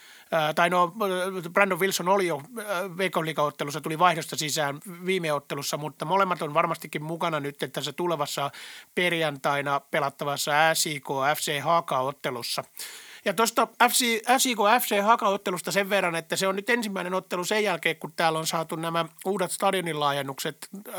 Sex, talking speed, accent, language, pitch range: male, 130 wpm, native, Finnish, 155-190 Hz